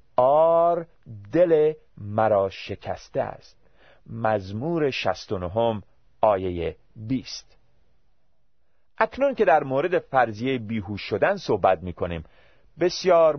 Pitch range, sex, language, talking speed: 95-155 Hz, male, Persian, 95 wpm